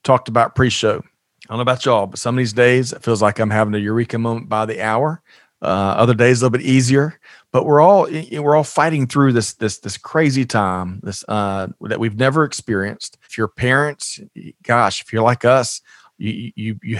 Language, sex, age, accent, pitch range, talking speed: English, male, 40-59, American, 105-130 Hz, 210 wpm